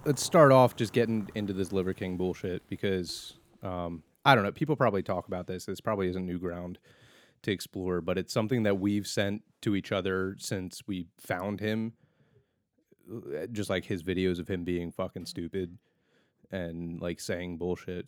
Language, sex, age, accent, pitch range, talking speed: English, male, 30-49, American, 90-105 Hz, 180 wpm